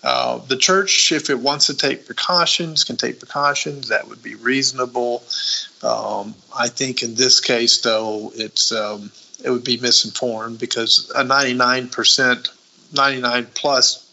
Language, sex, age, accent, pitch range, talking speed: English, male, 50-69, American, 120-150 Hz, 150 wpm